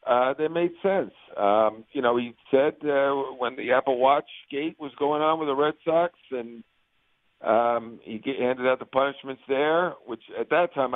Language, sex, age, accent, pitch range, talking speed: English, male, 50-69, American, 120-145 Hz, 185 wpm